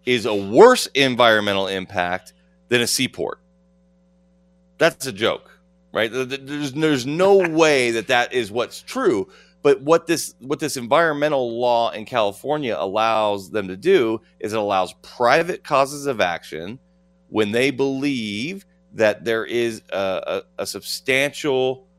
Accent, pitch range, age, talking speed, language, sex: American, 90-135 Hz, 40-59, 140 wpm, English, male